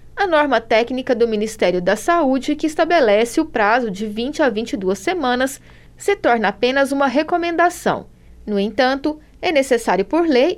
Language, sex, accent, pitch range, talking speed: Portuguese, female, Brazilian, 220-290 Hz, 155 wpm